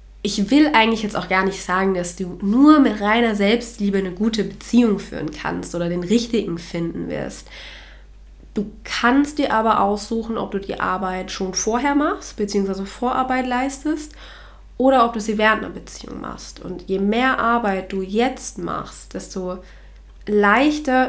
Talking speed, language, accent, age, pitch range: 160 wpm, German, German, 20-39, 185-230 Hz